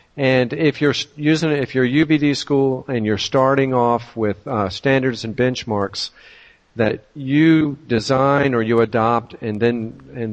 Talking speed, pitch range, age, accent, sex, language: 155 wpm, 110-135 Hz, 50-69, American, male, English